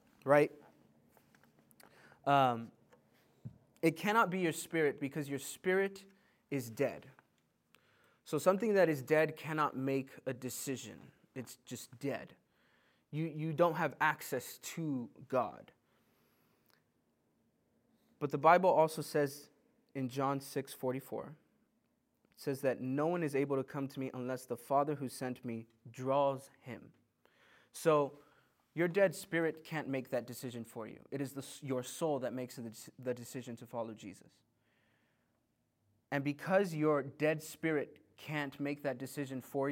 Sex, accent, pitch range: male, American, 120-155 Hz